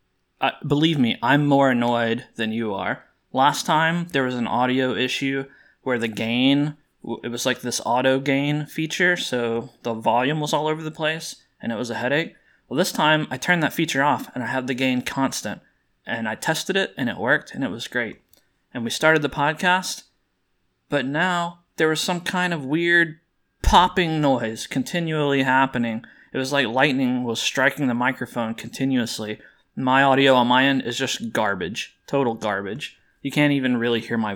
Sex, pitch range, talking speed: male, 115-150 Hz, 185 wpm